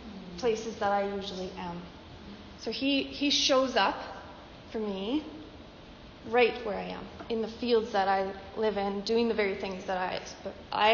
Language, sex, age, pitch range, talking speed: English, female, 30-49, 205-250 Hz, 165 wpm